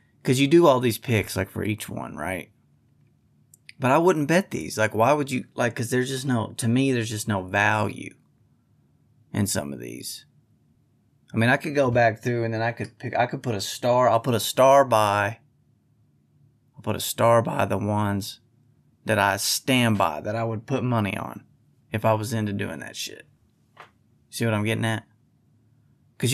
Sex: male